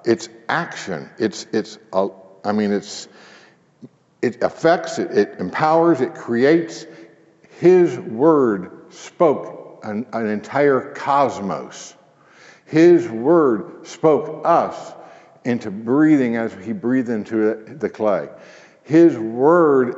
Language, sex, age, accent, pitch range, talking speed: English, male, 60-79, American, 110-150 Hz, 110 wpm